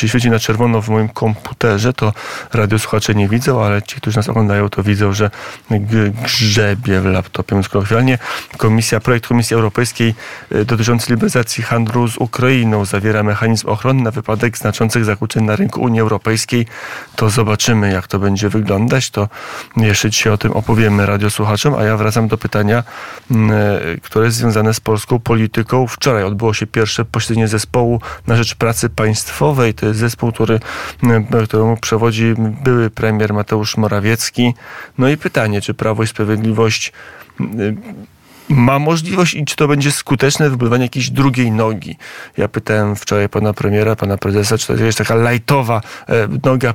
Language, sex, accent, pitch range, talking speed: Polish, male, native, 110-125 Hz, 155 wpm